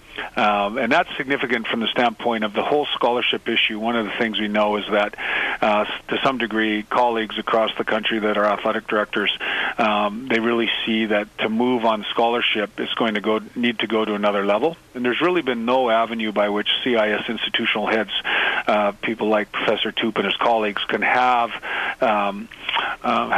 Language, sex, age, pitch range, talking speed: English, male, 40-59, 105-120 Hz, 190 wpm